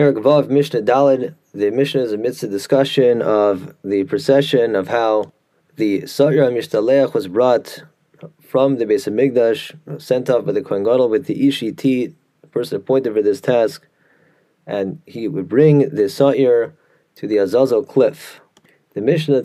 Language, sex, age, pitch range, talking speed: English, male, 30-49, 125-150 Hz, 150 wpm